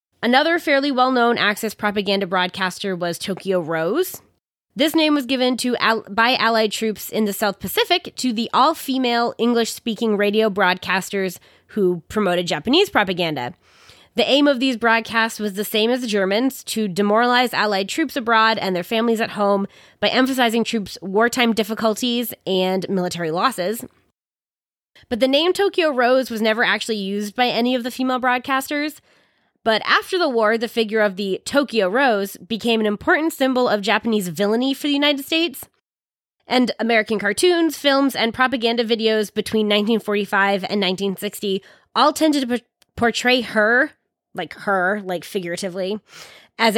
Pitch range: 200-250 Hz